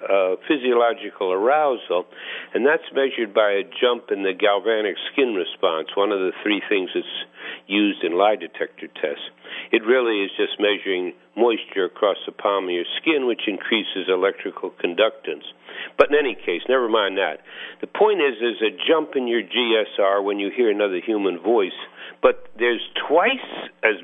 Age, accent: 60-79, American